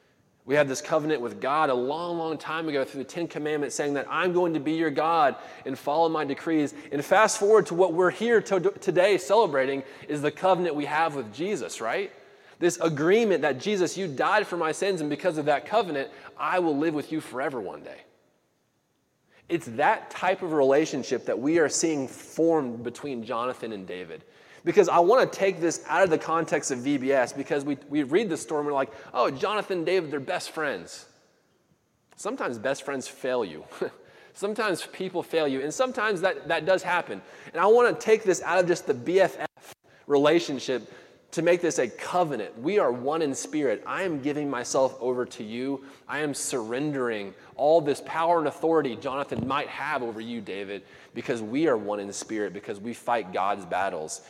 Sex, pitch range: male, 135-175 Hz